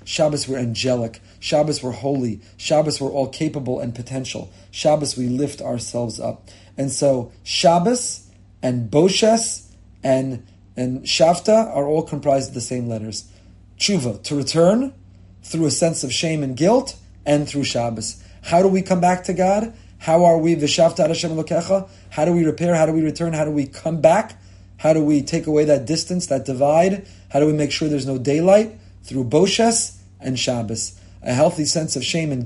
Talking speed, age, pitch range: 185 wpm, 30-49, 120-165 Hz